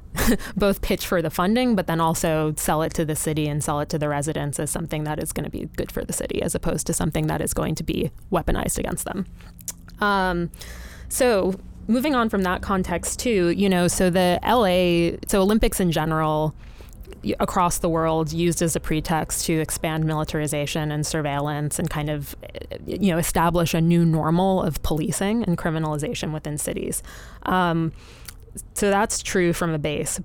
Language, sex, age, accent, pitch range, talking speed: English, female, 20-39, American, 155-180 Hz, 185 wpm